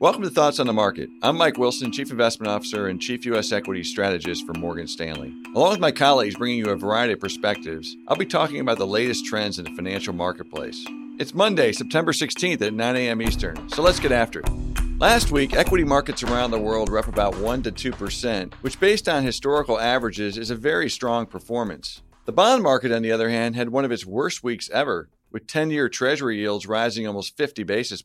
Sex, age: male, 50-69